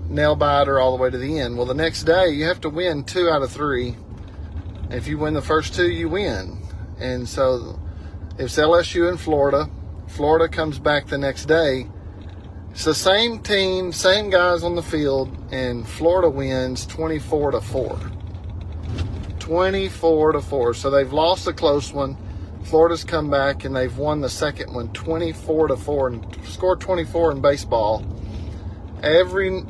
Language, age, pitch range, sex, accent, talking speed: English, 40-59, 95-155 Hz, male, American, 165 wpm